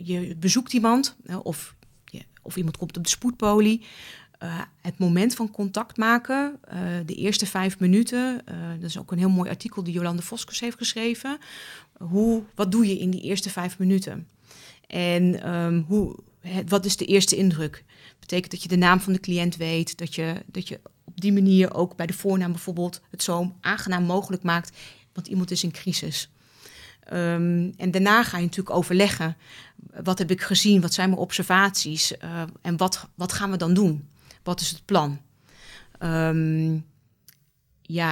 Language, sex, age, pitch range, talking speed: Dutch, female, 30-49, 160-190 Hz, 175 wpm